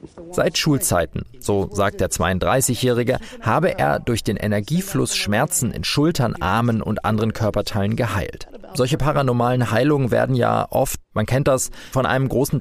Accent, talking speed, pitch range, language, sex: German, 150 wpm, 105-150 Hz, German, male